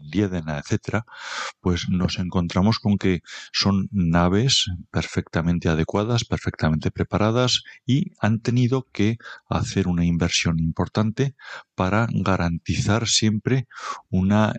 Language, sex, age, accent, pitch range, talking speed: Spanish, male, 40-59, Spanish, 85-105 Hz, 105 wpm